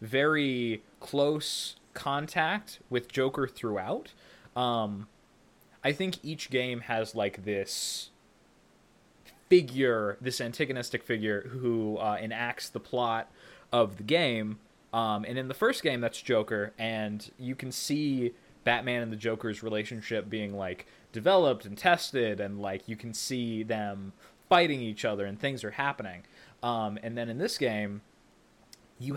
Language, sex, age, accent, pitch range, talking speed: English, male, 20-39, American, 105-140 Hz, 140 wpm